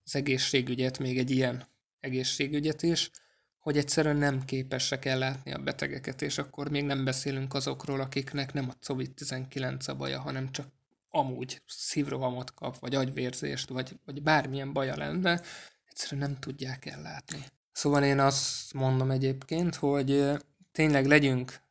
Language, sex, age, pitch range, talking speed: Hungarian, male, 20-39, 130-145 Hz, 140 wpm